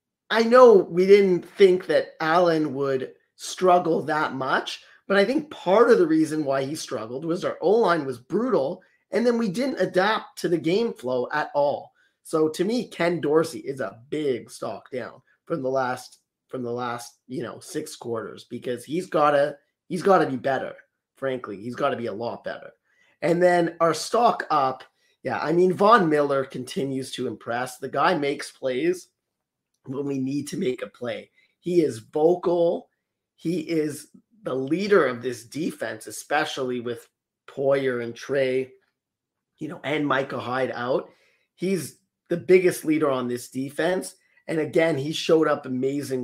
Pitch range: 130-180 Hz